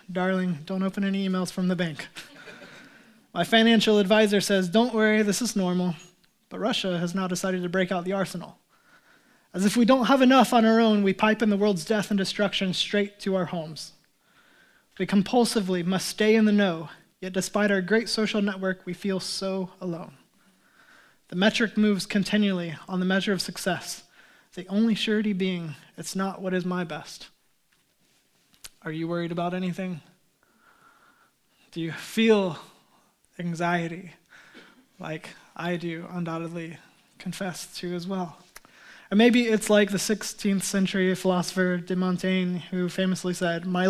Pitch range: 180-210 Hz